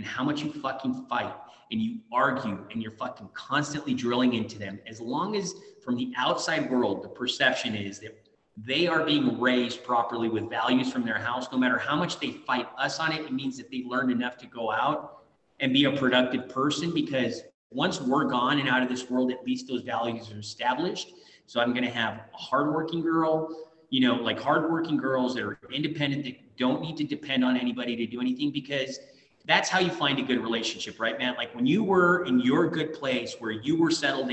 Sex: male